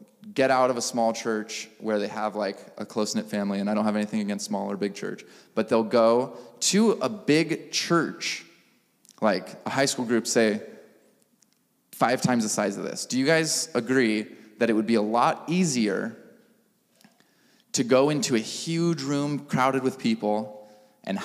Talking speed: 180 wpm